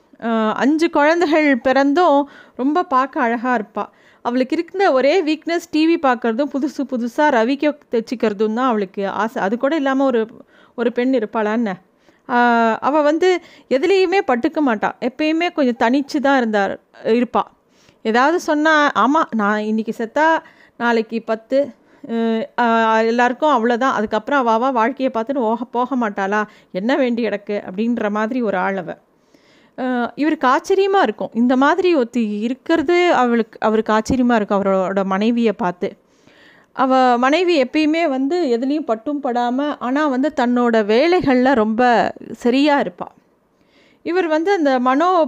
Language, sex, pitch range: Tamil, female, 230-300 Hz